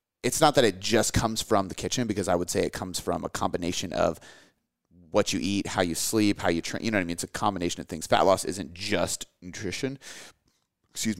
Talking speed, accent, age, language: 235 wpm, American, 30-49, English